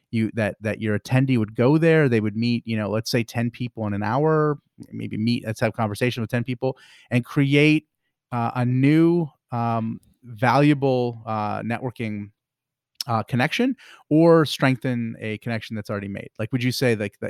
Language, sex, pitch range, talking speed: English, male, 110-135 Hz, 180 wpm